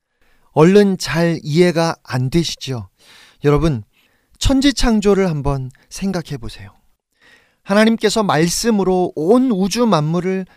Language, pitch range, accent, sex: Korean, 160-250 Hz, native, male